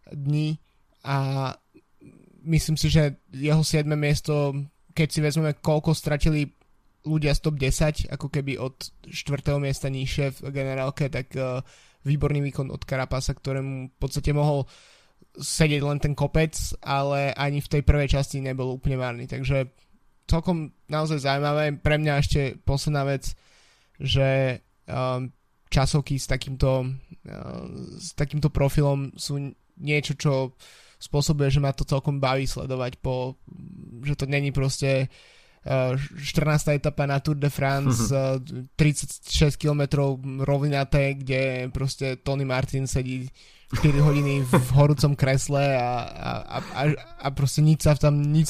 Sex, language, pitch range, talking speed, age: male, Slovak, 130-150 Hz, 135 wpm, 20-39